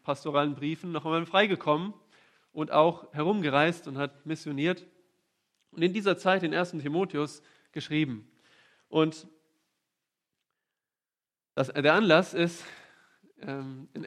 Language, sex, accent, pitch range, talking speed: German, male, German, 145-175 Hz, 100 wpm